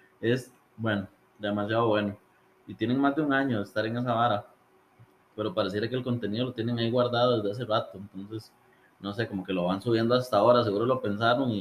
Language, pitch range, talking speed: Spanish, 105-135 Hz, 205 wpm